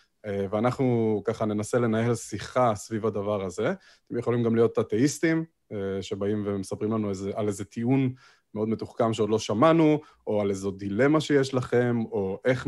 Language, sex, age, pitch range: Hebrew, male, 20-39, 105-135 Hz